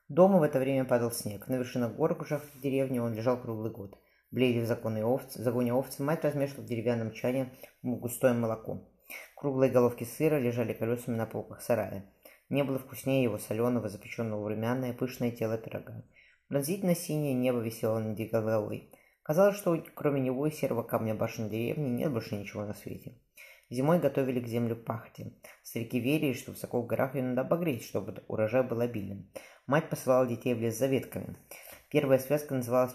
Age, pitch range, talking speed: 20-39, 110-130 Hz, 170 wpm